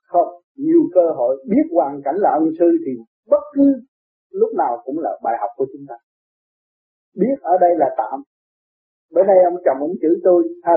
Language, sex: Vietnamese, male